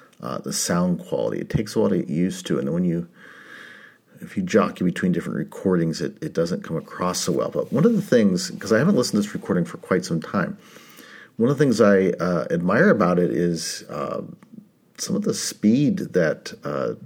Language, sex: English, male